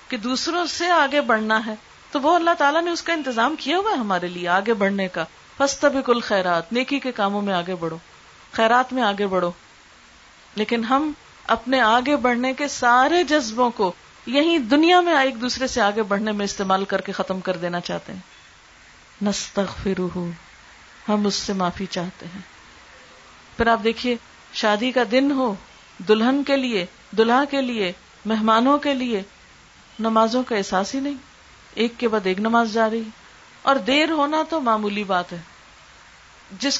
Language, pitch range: Urdu, 200-275 Hz